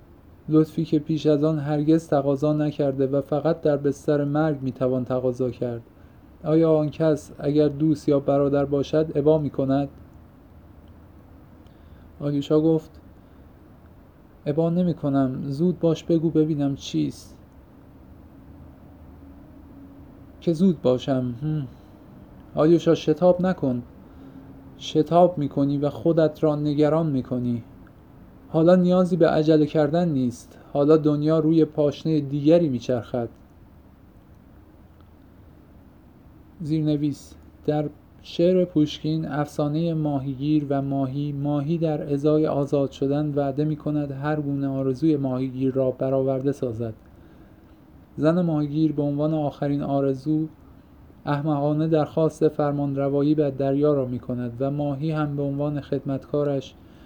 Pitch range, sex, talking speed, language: 125-155 Hz, male, 115 wpm, Persian